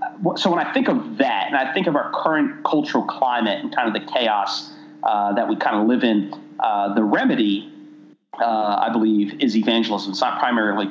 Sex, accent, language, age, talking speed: male, American, English, 30-49, 205 wpm